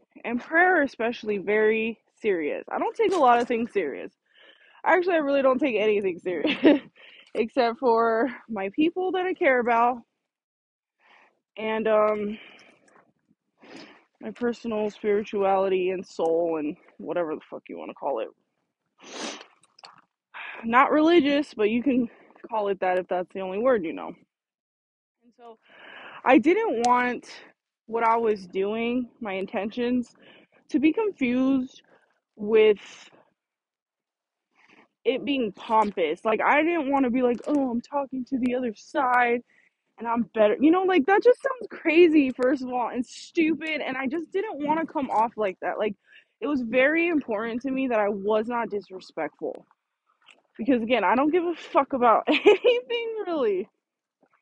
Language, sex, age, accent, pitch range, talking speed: English, female, 20-39, American, 220-300 Hz, 150 wpm